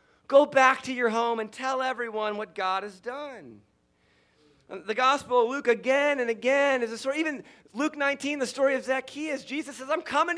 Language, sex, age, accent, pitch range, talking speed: English, male, 40-59, American, 180-235 Hz, 190 wpm